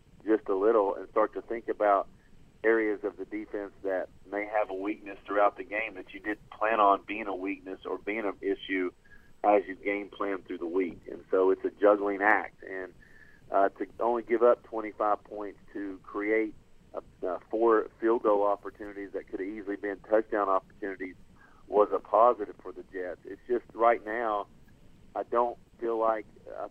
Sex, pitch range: male, 95-115 Hz